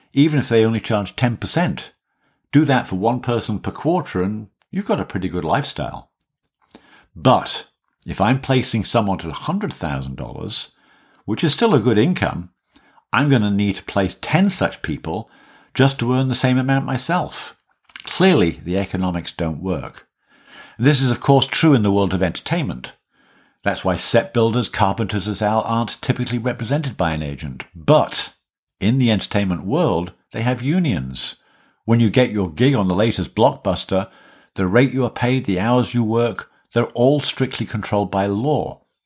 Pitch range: 90-130 Hz